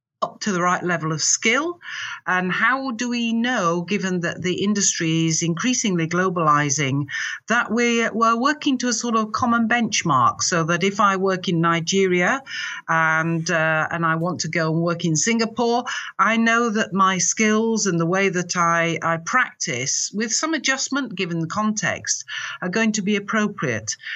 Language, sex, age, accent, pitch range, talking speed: English, female, 50-69, British, 165-225 Hz, 170 wpm